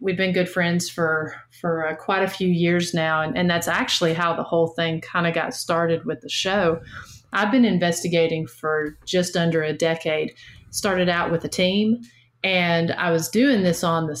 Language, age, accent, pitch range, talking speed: English, 30-49, American, 160-185 Hz, 200 wpm